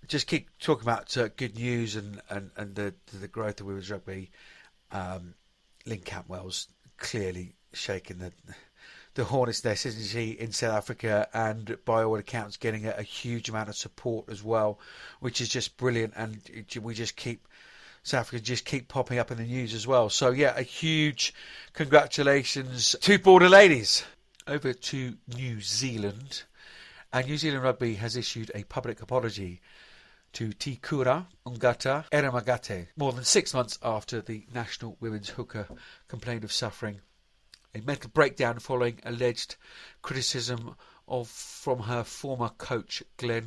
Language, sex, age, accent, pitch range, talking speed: English, male, 50-69, British, 105-125 Hz, 155 wpm